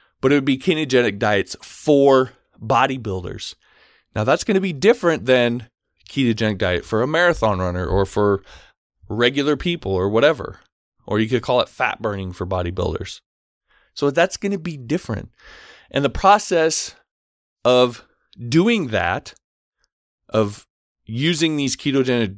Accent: American